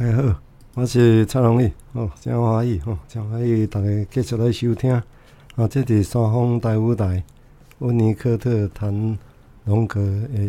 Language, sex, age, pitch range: Chinese, male, 50-69, 100-120 Hz